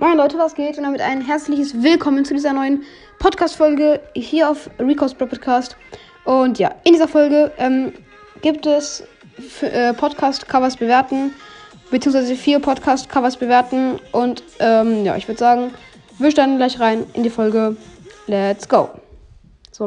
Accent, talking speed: German, 150 wpm